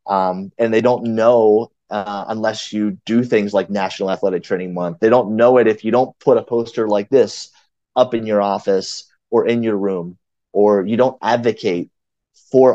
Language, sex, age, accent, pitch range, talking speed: English, male, 30-49, American, 100-130 Hz, 190 wpm